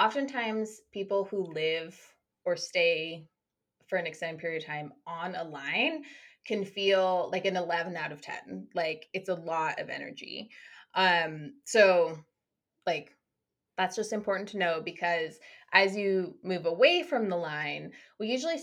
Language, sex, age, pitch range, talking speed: English, female, 20-39, 165-220 Hz, 150 wpm